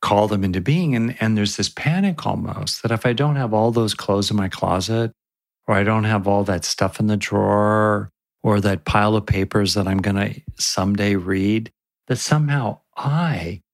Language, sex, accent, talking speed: English, male, American, 190 wpm